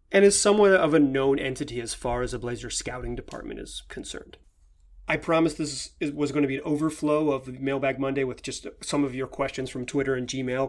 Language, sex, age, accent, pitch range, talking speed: English, male, 30-49, American, 135-190 Hz, 215 wpm